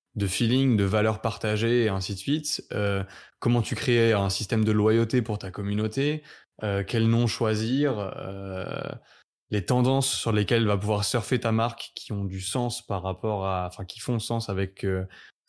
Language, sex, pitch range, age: French, male, 105-125 Hz, 20-39